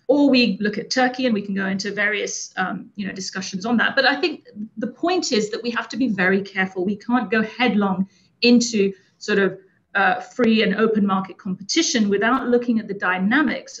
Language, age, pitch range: English, 40-59, 190-235 Hz